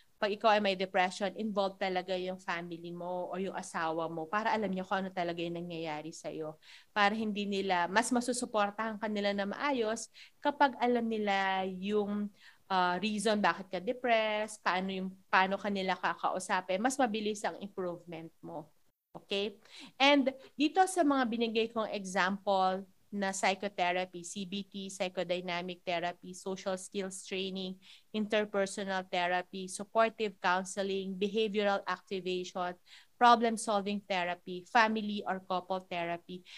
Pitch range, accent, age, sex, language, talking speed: 185-220 Hz, native, 30-49, female, Filipino, 130 wpm